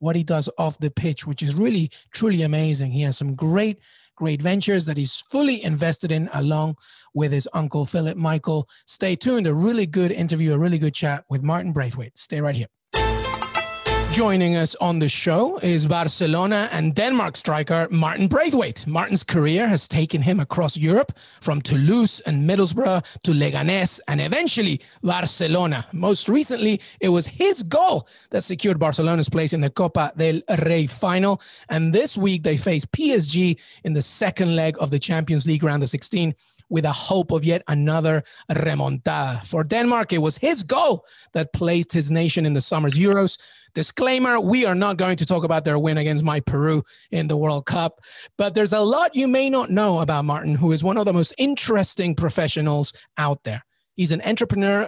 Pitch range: 150-195 Hz